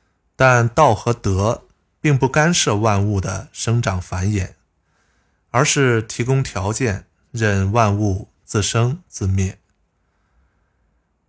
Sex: male